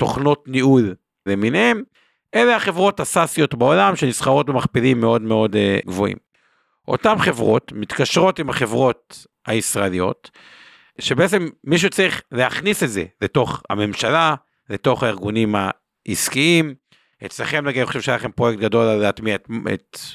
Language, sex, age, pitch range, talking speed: Hebrew, male, 50-69, 115-180 Hz, 120 wpm